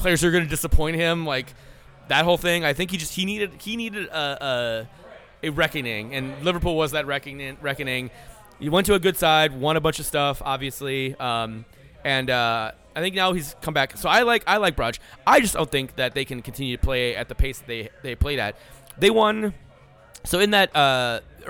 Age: 20-39